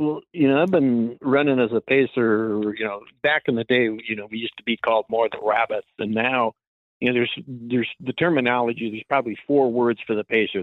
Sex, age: male, 50-69